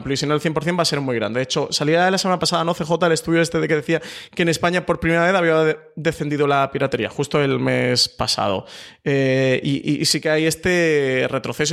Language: Spanish